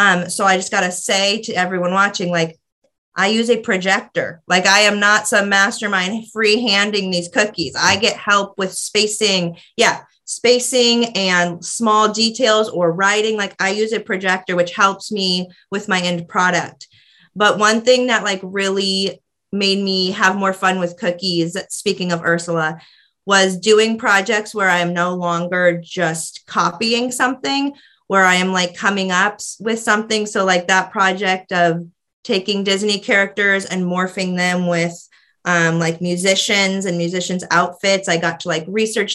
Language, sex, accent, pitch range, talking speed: English, female, American, 180-220 Hz, 165 wpm